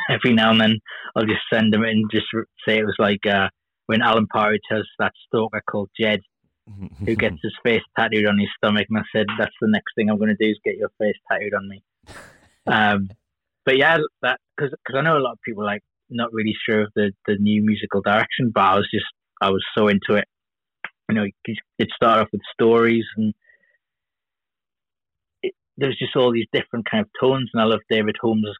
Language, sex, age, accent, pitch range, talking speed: English, male, 20-39, British, 100-115 Hz, 215 wpm